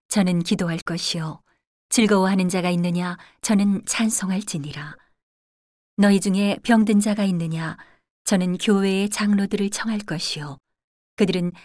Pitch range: 175-210 Hz